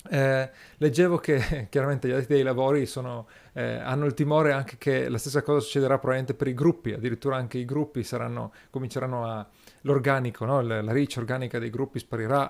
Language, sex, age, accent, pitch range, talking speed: Italian, male, 40-59, native, 115-145 Hz, 175 wpm